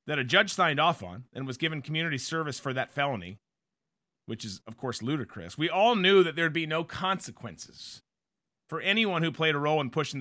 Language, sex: English, male